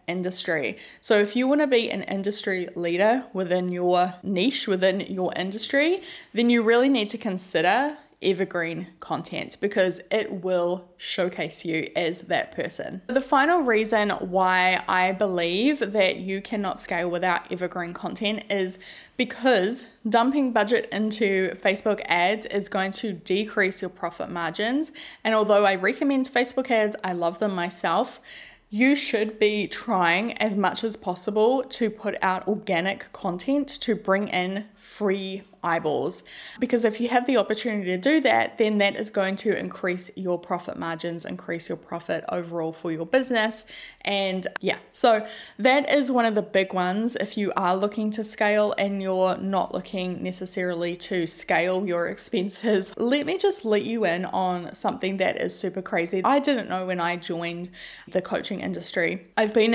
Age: 10-29